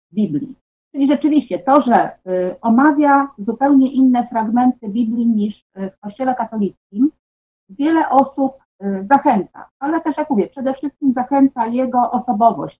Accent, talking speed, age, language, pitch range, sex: native, 130 wpm, 40-59, Polish, 205-270 Hz, female